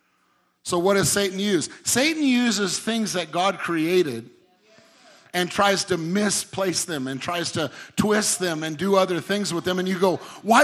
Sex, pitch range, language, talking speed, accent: male, 140-180 Hz, English, 175 wpm, American